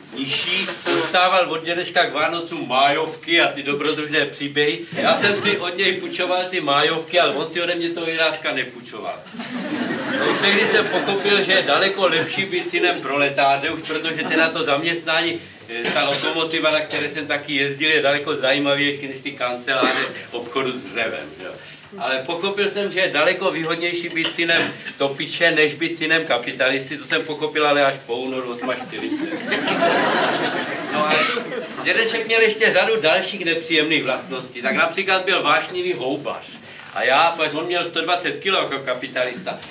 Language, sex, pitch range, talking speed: Czech, male, 145-190 Hz, 155 wpm